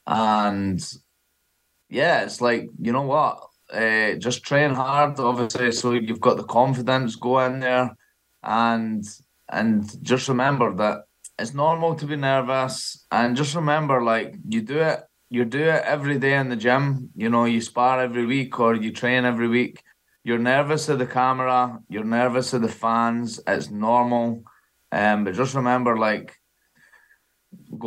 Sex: male